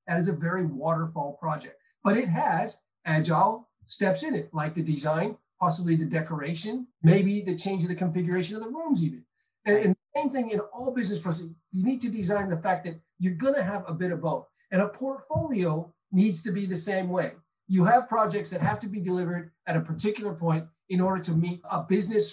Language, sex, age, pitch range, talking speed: English, male, 40-59, 165-210 Hz, 210 wpm